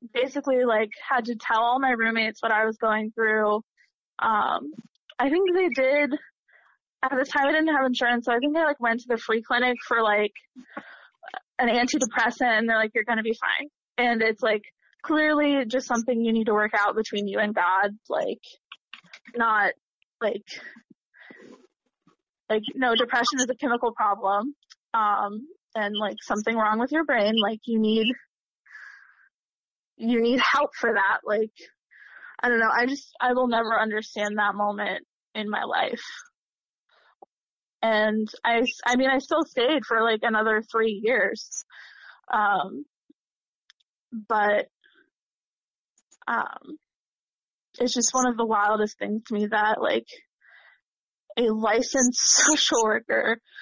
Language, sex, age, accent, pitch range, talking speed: English, female, 20-39, American, 220-265 Hz, 150 wpm